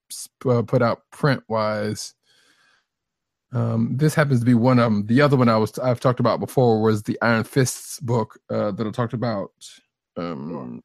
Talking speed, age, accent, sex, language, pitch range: 185 wpm, 20-39, American, male, English, 115-140 Hz